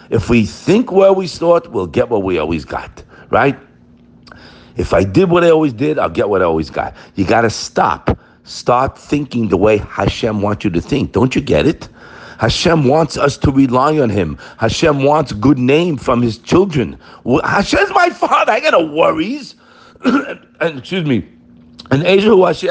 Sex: male